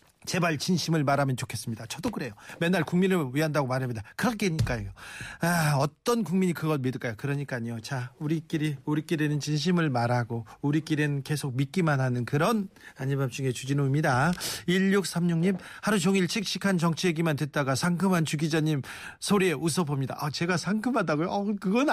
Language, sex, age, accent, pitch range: Korean, male, 40-59, native, 140-200 Hz